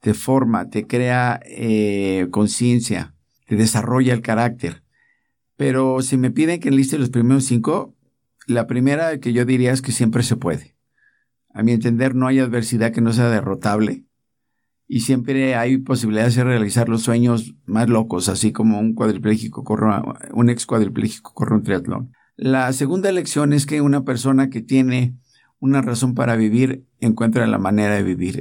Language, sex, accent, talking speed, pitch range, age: Spanish, male, Mexican, 165 wpm, 110-130 Hz, 50-69